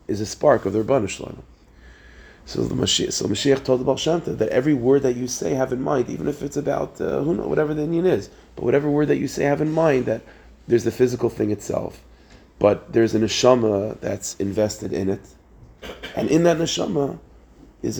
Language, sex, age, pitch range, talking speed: English, male, 30-49, 105-135 Hz, 215 wpm